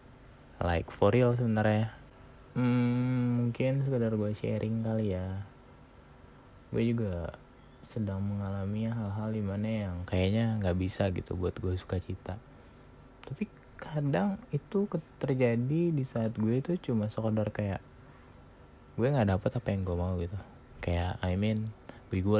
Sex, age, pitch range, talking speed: male, 20-39, 90-115 Hz, 135 wpm